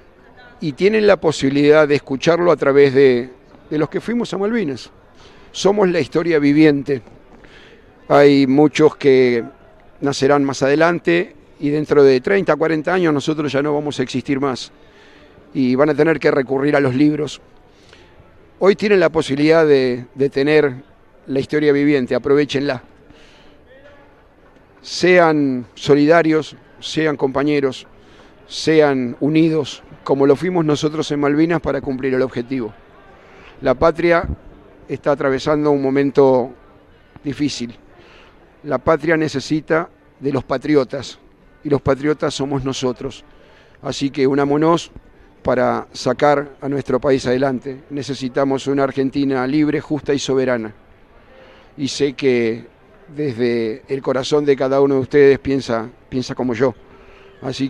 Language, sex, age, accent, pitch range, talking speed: Spanish, male, 50-69, Argentinian, 130-150 Hz, 130 wpm